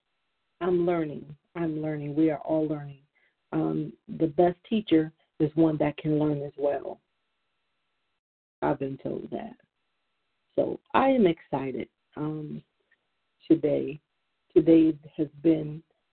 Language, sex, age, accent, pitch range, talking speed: English, female, 40-59, American, 145-170 Hz, 120 wpm